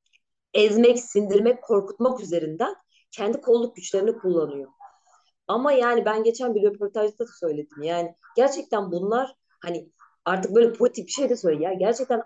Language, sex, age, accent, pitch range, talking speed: Turkish, female, 30-49, native, 175-240 Hz, 140 wpm